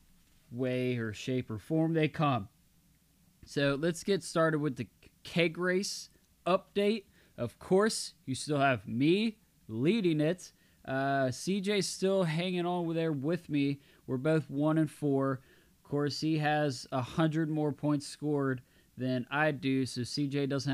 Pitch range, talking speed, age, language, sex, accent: 135-185 Hz, 150 wpm, 20-39, English, male, American